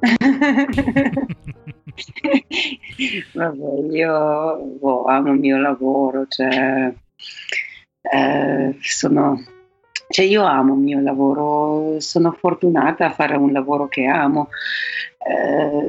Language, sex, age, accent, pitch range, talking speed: Italian, female, 40-59, native, 140-180 Hz, 95 wpm